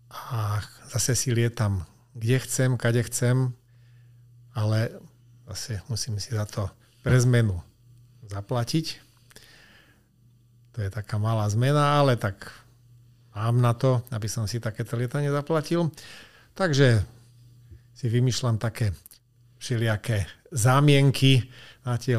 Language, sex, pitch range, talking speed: Slovak, male, 110-125 Hz, 110 wpm